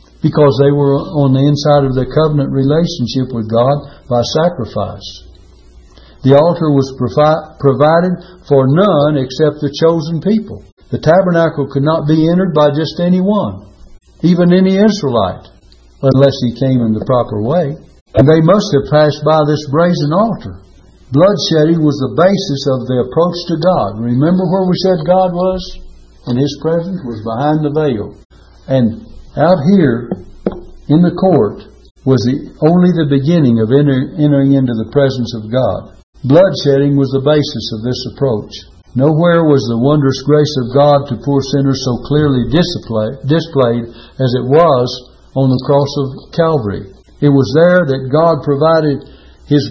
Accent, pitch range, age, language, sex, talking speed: American, 130-160 Hz, 60-79, English, male, 150 wpm